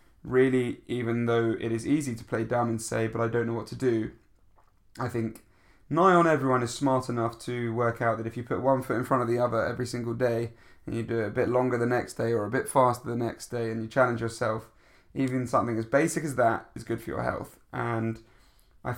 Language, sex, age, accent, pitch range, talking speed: English, male, 20-39, British, 115-130 Hz, 245 wpm